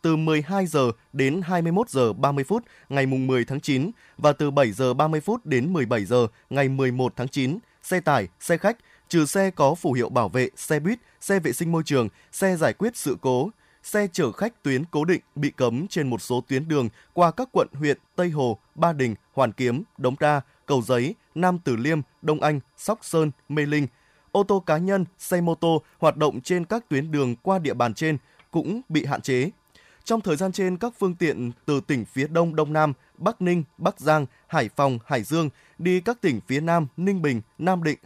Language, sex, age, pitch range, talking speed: Vietnamese, male, 20-39, 135-180 Hz, 215 wpm